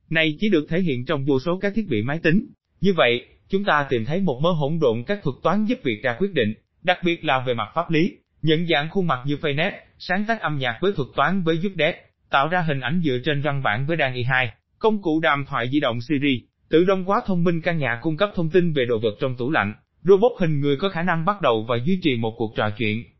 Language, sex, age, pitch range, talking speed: Vietnamese, male, 20-39, 125-180 Hz, 270 wpm